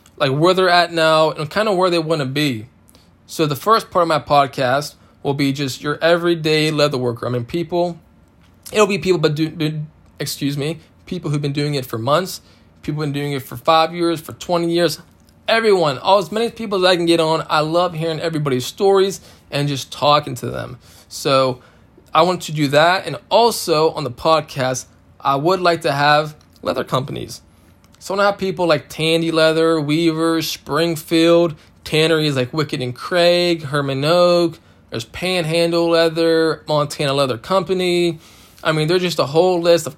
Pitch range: 140-170 Hz